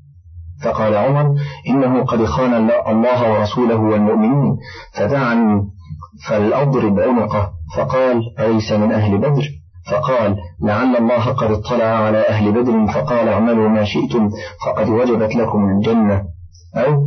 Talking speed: 120 wpm